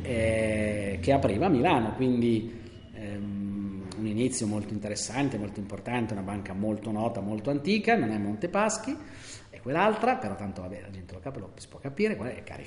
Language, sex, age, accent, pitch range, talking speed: Italian, male, 40-59, native, 100-120 Hz, 185 wpm